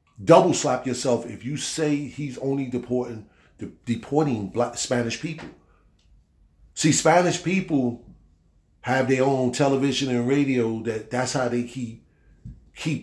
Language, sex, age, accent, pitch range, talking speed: English, male, 40-59, American, 100-130 Hz, 135 wpm